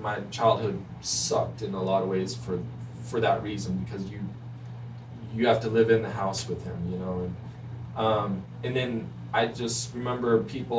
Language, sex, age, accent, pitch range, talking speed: English, male, 20-39, American, 105-125 Hz, 185 wpm